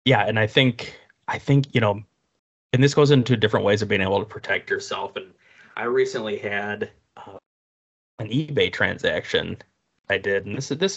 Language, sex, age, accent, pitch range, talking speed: English, male, 20-39, American, 100-135 Hz, 185 wpm